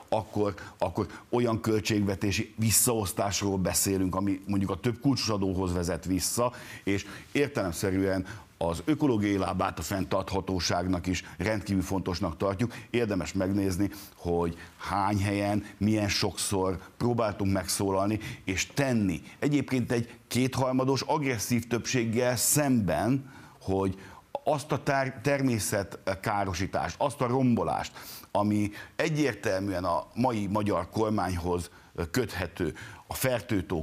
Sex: male